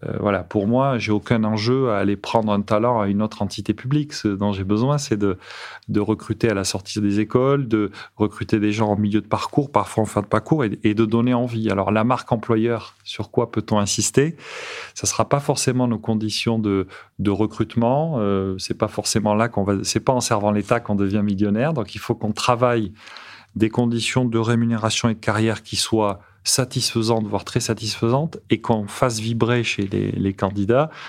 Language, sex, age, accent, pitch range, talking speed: French, male, 30-49, French, 100-120 Hz, 200 wpm